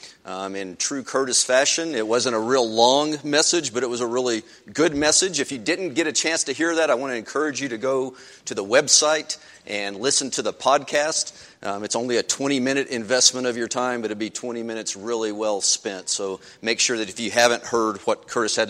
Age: 40-59